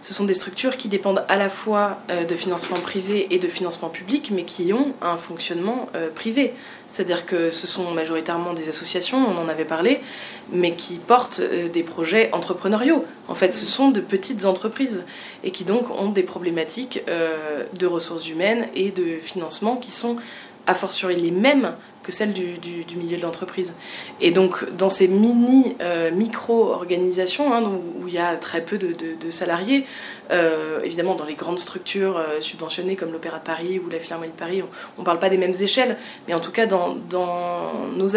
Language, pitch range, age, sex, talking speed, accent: French, 175-205 Hz, 20-39, female, 190 wpm, French